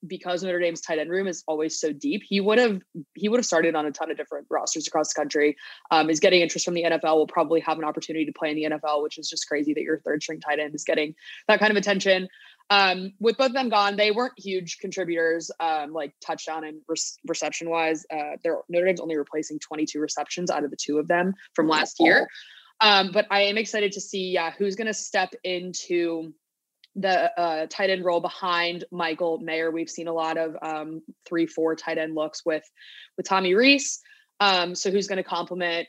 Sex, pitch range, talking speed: female, 160-195 Hz, 225 wpm